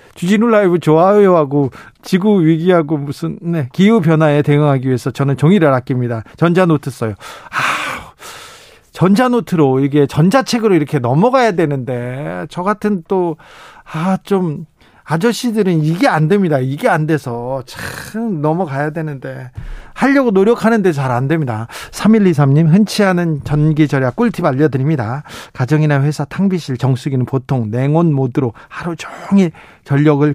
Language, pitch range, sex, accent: Korean, 130-180 Hz, male, native